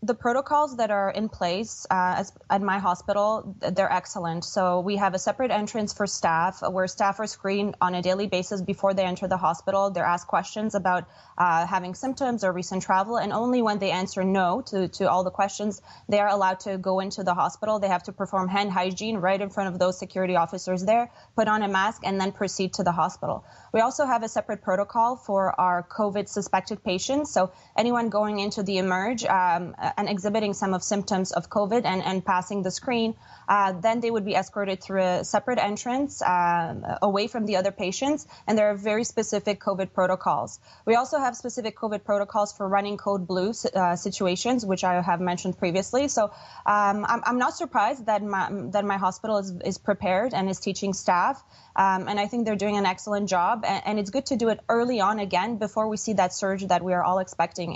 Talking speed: 210 wpm